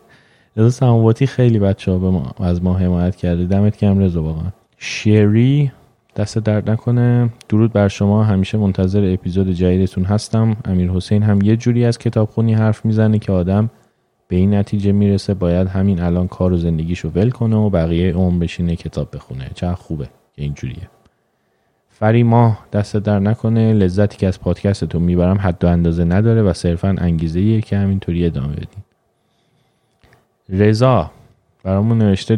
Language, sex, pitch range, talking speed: Persian, male, 90-110 Hz, 145 wpm